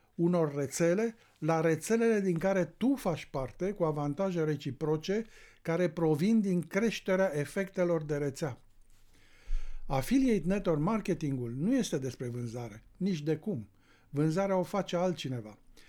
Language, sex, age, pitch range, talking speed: Romanian, male, 60-79, 135-185 Hz, 125 wpm